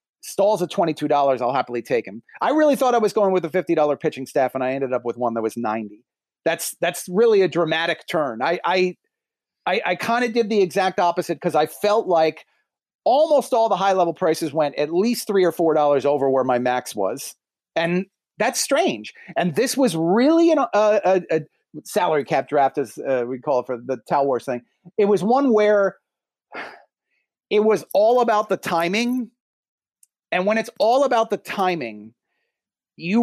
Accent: American